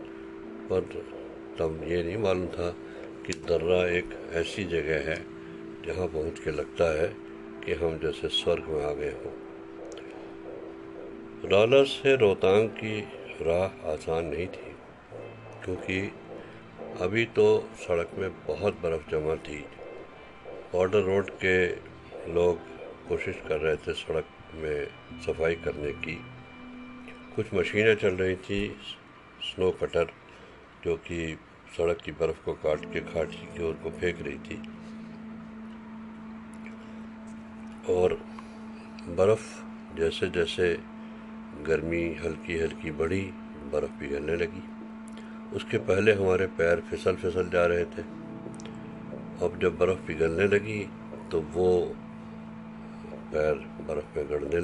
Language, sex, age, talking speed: Hindi, male, 60-79, 115 wpm